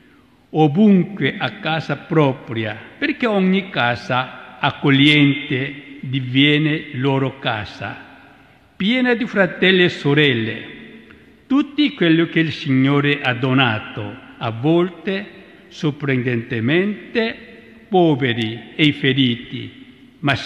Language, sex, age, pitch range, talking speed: Italian, male, 60-79, 125-185 Hz, 90 wpm